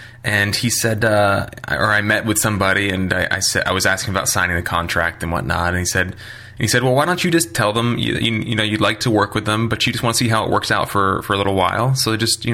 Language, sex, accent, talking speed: English, male, American, 295 wpm